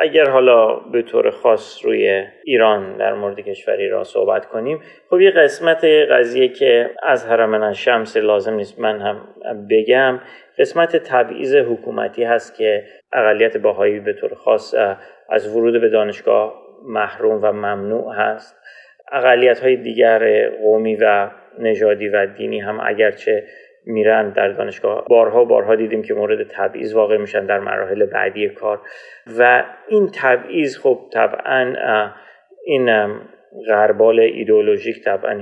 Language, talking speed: Persian, 130 wpm